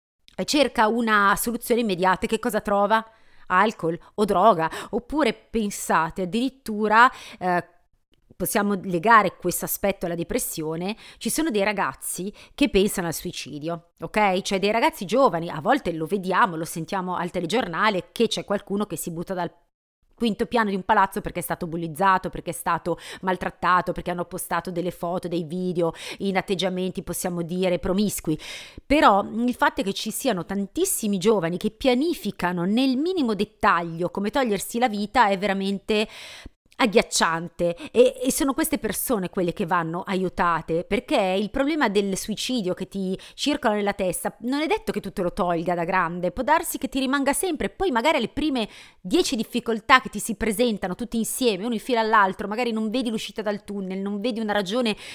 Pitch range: 175-235 Hz